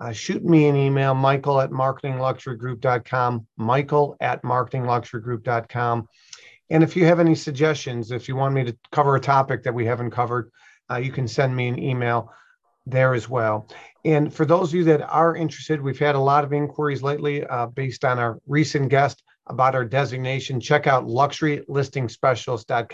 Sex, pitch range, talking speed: male, 125-145 Hz, 180 wpm